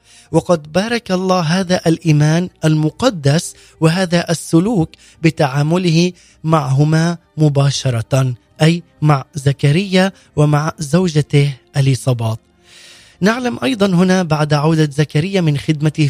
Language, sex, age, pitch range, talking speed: Arabic, male, 30-49, 145-185 Hz, 95 wpm